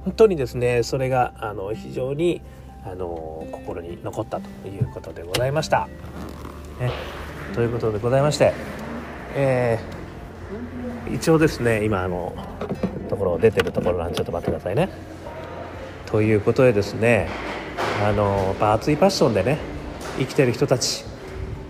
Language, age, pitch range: Japanese, 40-59, 90-130 Hz